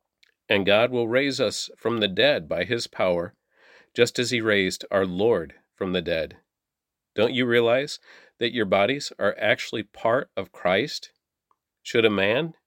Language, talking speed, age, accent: English, 160 wpm, 40-59, American